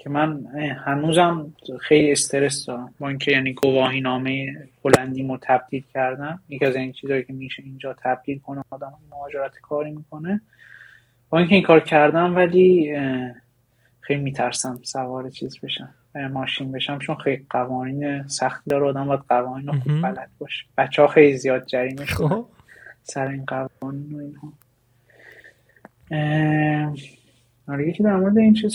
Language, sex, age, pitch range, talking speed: Persian, male, 20-39, 130-155 Hz, 135 wpm